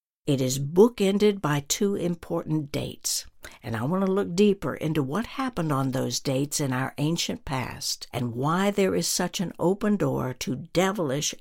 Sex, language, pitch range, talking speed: female, English, 135-200 Hz, 175 wpm